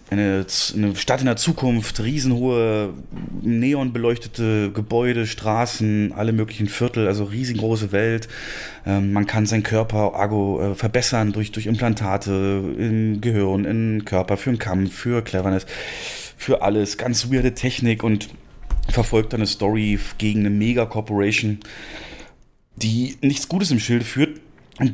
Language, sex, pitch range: German, male, 105-125 Hz